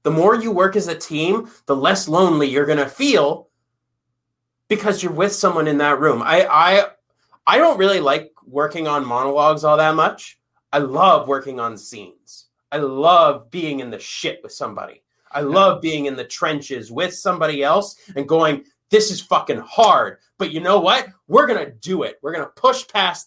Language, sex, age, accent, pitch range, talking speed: English, male, 30-49, American, 140-185 Hz, 195 wpm